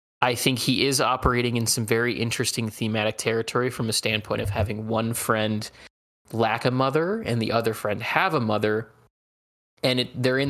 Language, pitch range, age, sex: English, 110-125 Hz, 20-39, male